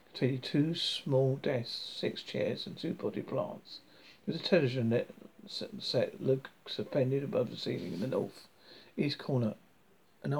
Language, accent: English, British